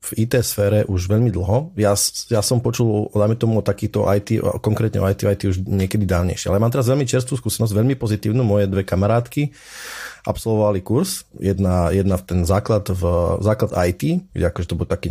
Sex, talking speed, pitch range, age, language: male, 185 wpm, 95-115 Hz, 30-49, Slovak